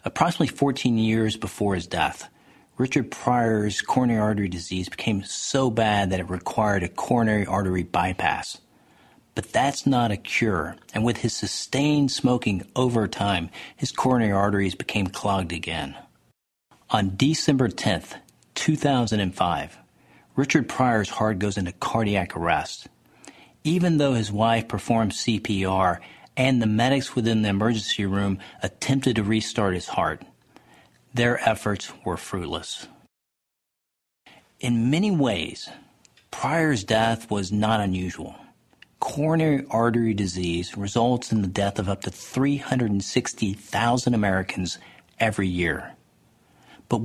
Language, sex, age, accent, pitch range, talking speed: English, male, 40-59, American, 95-120 Hz, 120 wpm